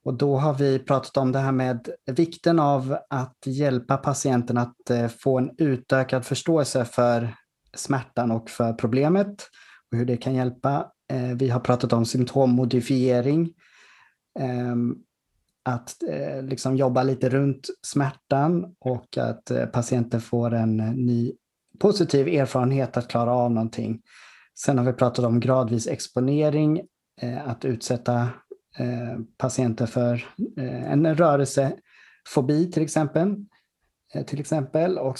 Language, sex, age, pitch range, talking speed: Swedish, male, 30-49, 120-145 Hz, 115 wpm